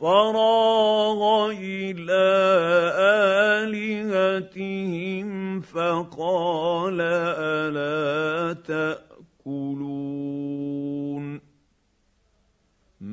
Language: Arabic